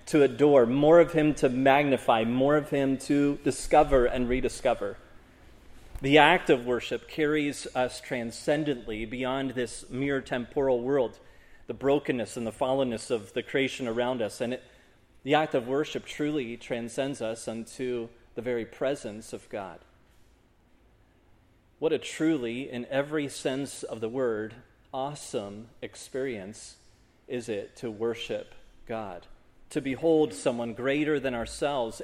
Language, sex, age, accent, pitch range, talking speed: English, male, 30-49, American, 120-150 Hz, 135 wpm